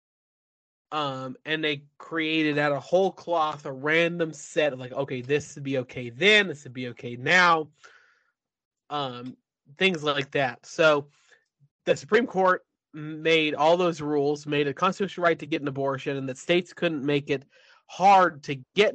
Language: English